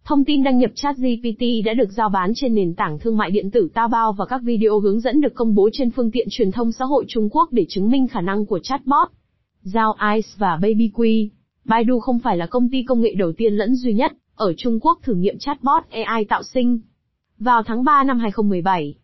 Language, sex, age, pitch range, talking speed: Vietnamese, female, 20-39, 210-255 Hz, 225 wpm